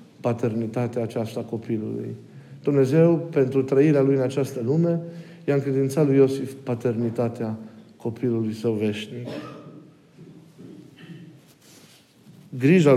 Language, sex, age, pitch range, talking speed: Romanian, male, 50-69, 115-140 Hz, 90 wpm